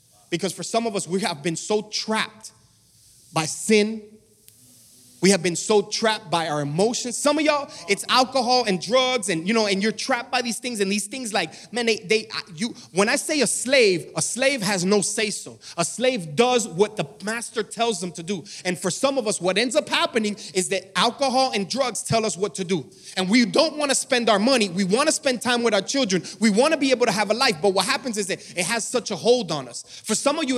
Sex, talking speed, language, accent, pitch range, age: male, 245 wpm, English, American, 175-245 Hz, 30-49